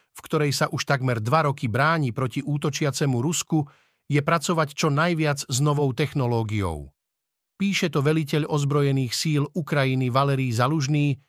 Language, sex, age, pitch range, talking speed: Slovak, male, 50-69, 135-160 Hz, 140 wpm